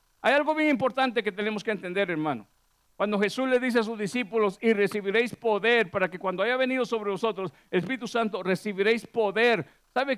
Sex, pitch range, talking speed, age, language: male, 200-245 Hz, 185 wpm, 50-69, Spanish